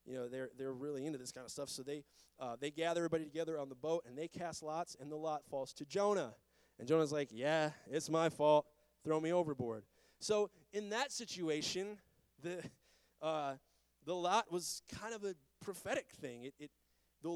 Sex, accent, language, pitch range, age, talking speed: male, American, English, 135-185 Hz, 20-39, 195 wpm